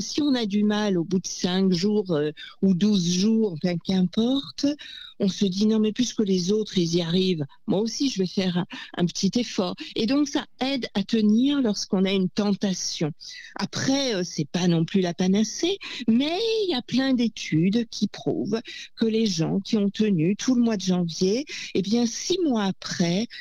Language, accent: French, French